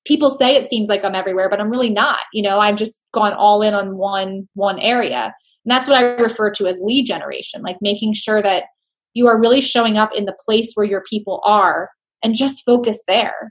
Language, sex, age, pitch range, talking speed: English, female, 20-39, 200-245 Hz, 225 wpm